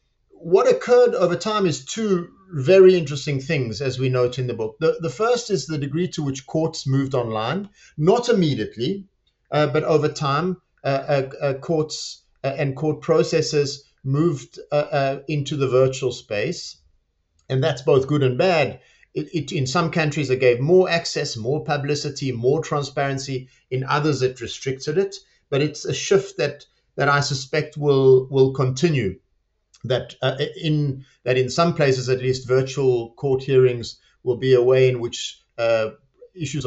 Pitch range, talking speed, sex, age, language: 130-165 Hz, 165 wpm, male, 50-69, English